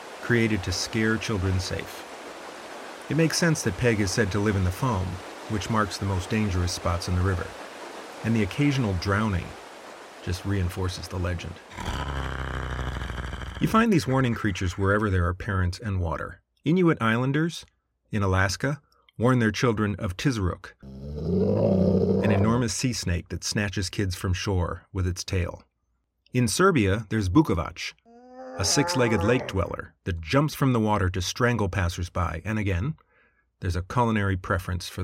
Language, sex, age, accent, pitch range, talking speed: English, male, 40-59, American, 90-115 Hz, 150 wpm